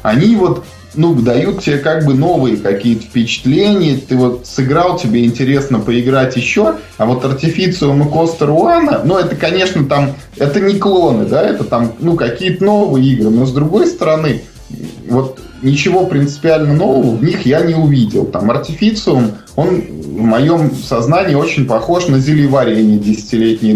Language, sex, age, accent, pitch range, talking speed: Russian, male, 20-39, native, 120-155 Hz, 155 wpm